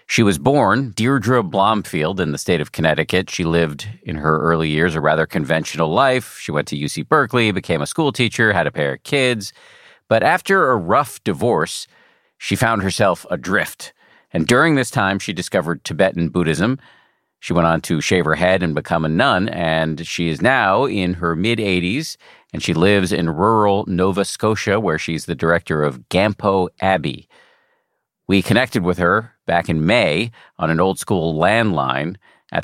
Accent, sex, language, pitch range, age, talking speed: American, male, English, 80-115 Hz, 50-69, 175 wpm